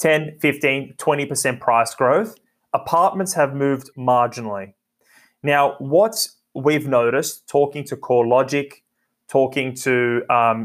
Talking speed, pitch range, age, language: 105 wpm, 130-150 Hz, 20-39, English